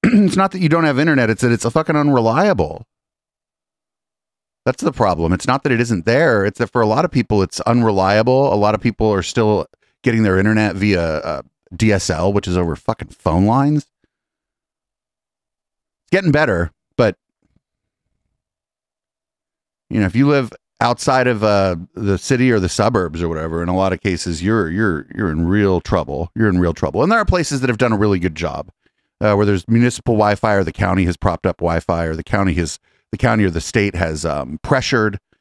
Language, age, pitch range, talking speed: English, 30-49, 90-120 Hz, 200 wpm